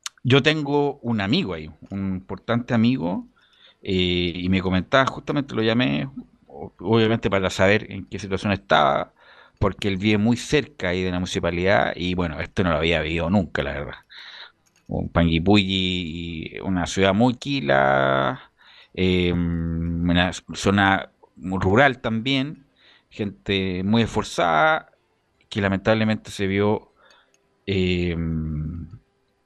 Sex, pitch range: male, 90-115 Hz